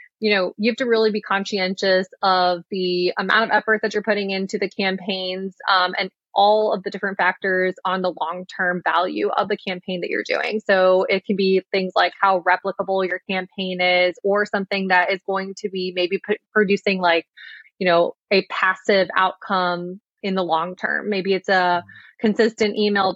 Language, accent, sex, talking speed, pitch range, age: English, American, female, 185 wpm, 180-205 Hz, 20-39